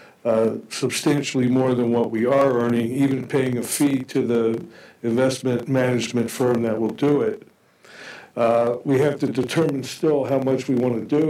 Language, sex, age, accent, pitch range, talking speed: English, male, 60-79, American, 125-140 Hz, 175 wpm